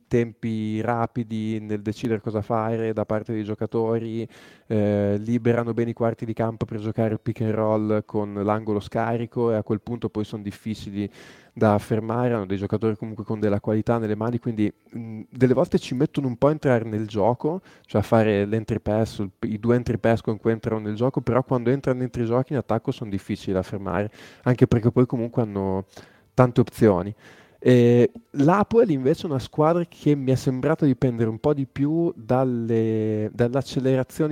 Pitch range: 110-125 Hz